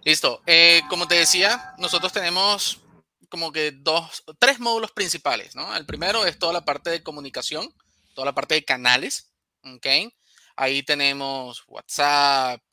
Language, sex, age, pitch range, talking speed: Spanish, male, 30-49, 130-170 Hz, 145 wpm